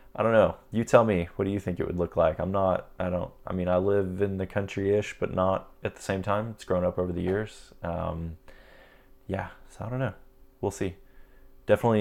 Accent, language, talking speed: American, English, 230 wpm